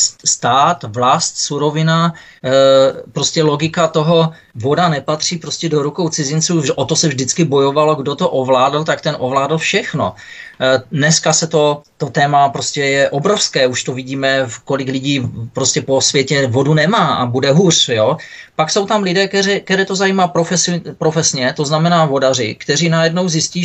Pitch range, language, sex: 145-175 Hz, Czech, male